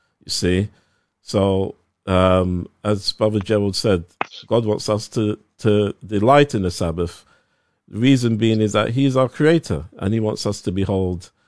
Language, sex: English, male